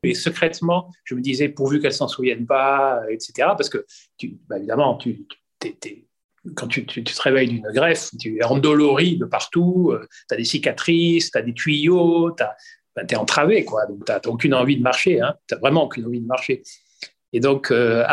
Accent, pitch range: French, 125-165 Hz